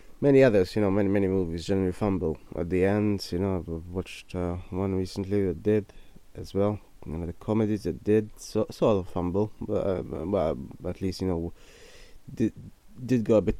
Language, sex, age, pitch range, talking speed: English, male, 20-39, 90-110 Hz, 200 wpm